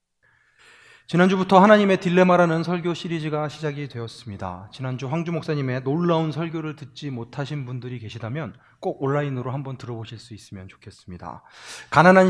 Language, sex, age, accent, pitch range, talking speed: English, male, 30-49, Korean, 120-165 Hz, 115 wpm